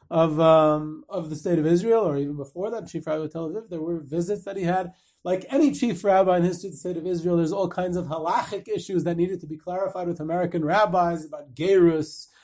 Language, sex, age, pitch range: English, male, 30-49, 160-205 Hz